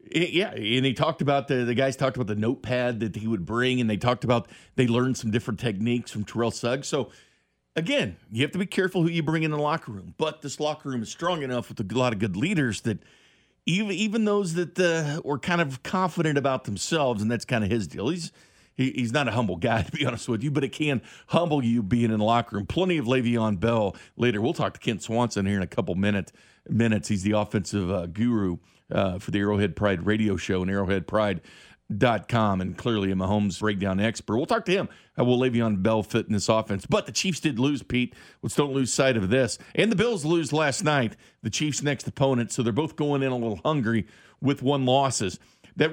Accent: American